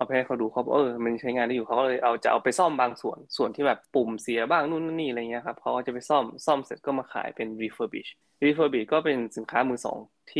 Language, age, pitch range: Thai, 20-39, 115-135 Hz